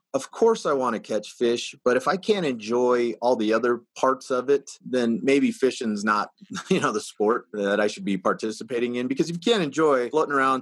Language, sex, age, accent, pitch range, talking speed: English, male, 30-49, American, 115-165 Hz, 220 wpm